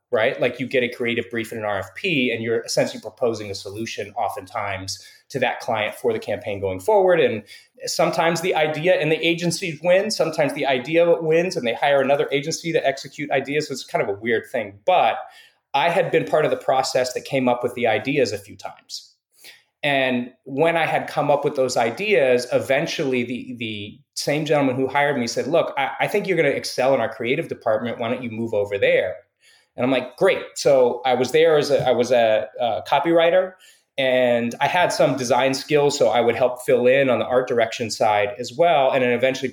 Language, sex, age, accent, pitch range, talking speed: English, male, 30-49, American, 120-170 Hz, 215 wpm